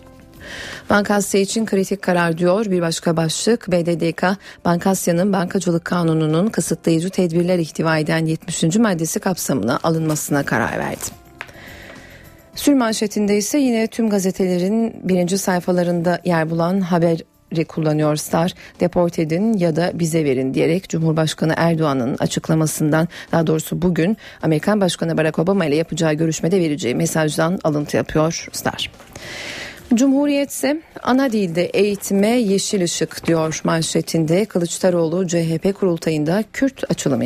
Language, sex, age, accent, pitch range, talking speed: Turkish, female, 40-59, native, 165-205 Hz, 120 wpm